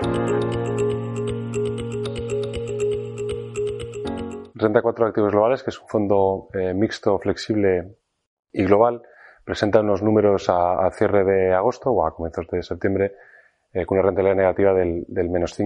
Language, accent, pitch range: Spanish, Spanish, 90-110 Hz